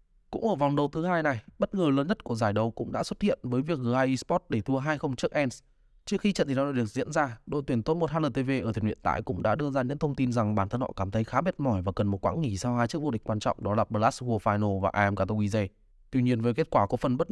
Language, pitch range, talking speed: Vietnamese, 115-165 Hz, 305 wpm